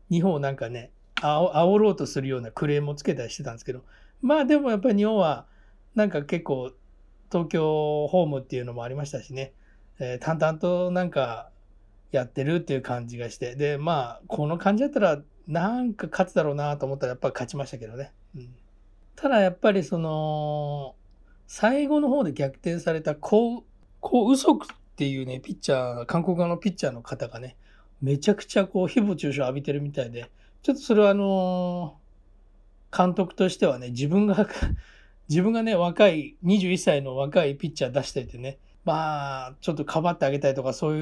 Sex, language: male, Japanese